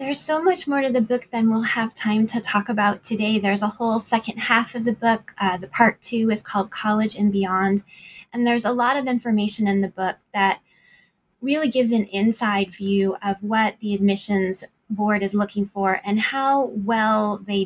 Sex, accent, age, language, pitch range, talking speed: female, American, 20-39, English, 200-240 Hz, 200 wpm